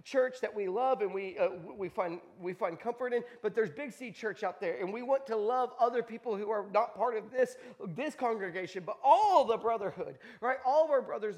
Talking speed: 230 wpm